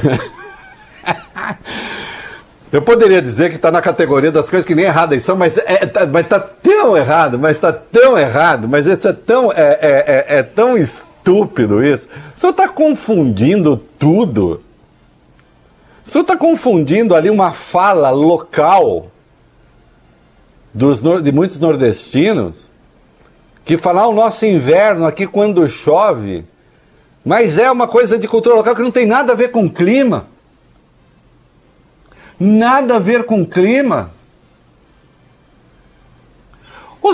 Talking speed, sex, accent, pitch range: 130 wpm, male, Brazilian, 175-245 Hz